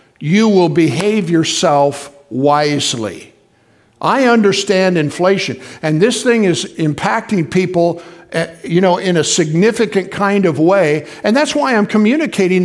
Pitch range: 175-225 Hz